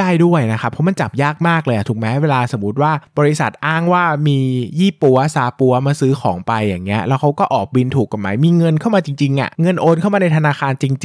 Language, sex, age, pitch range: Thai, male, 20-39, 115-155 Hz